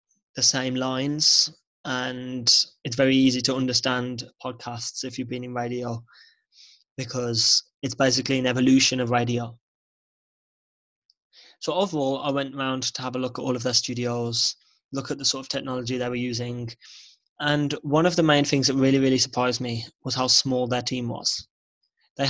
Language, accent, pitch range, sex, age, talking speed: English, British, 125-135 Hz, male, 20-39, 170 wpm